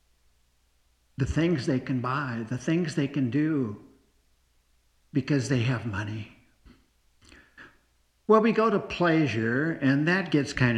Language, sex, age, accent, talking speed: English, male, 60-79, American, 130 wpm